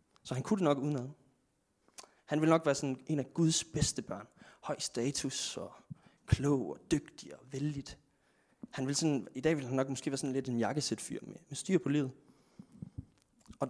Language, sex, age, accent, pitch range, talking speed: Danish, male, 20-39, native, 125-155 Hz, 195 wpm